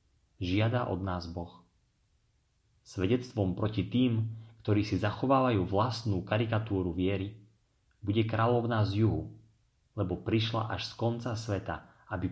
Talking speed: 115 wpm